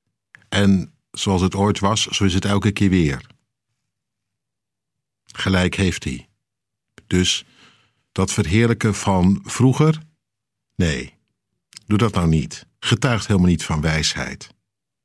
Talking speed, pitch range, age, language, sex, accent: 115 wpm, 95-120 Hz, 50-69, Dutch, male, Dutch